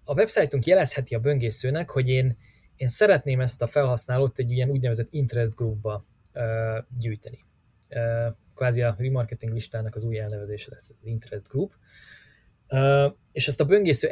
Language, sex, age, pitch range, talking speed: Hungarian, male, 20-39, 110-135 Hz, 155 wpm